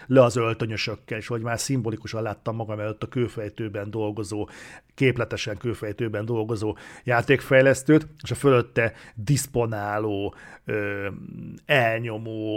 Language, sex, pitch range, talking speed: Hungarian, male, 110-130 Hz, 105 wpm